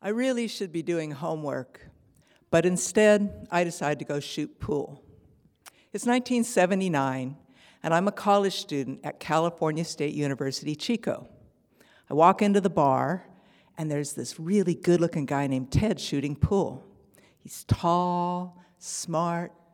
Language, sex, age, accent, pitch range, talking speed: English, female, 60-79, American, 145-190 Hz, 135 wpm